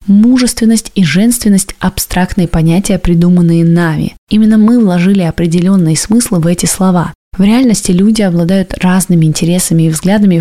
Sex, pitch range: female, 170-205 Hz